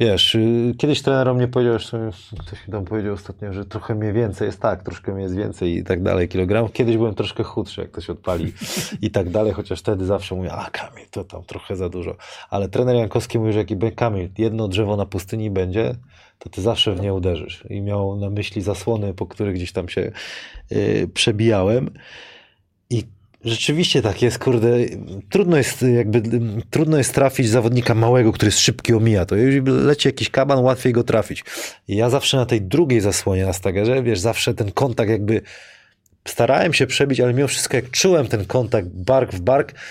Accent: native